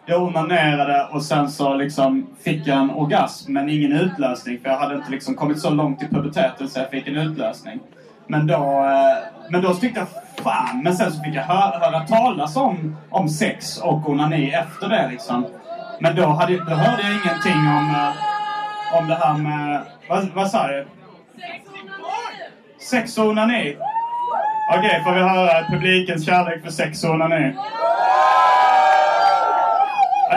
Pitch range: 150-195 Hz